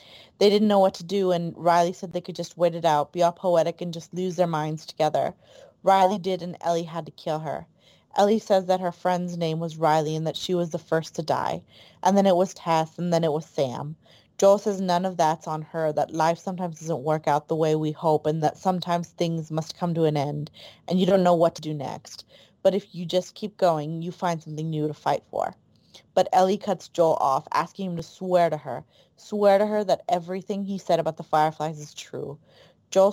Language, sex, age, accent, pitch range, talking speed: English, female, 30-49, American, 160-185 Hz, 235 wpm